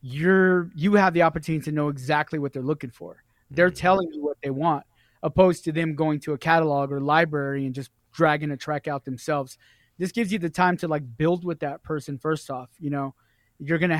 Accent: American